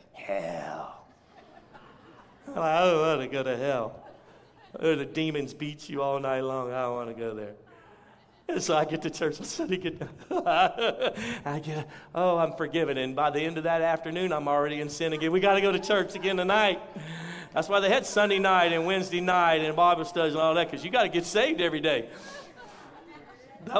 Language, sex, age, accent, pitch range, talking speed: English, male, 50-69, American, 155-220 Hz, 200 wpm